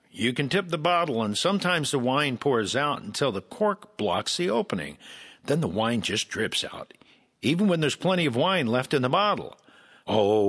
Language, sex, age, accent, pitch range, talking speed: English, male, 60-79, American, 115-180 Hz, 195 wpm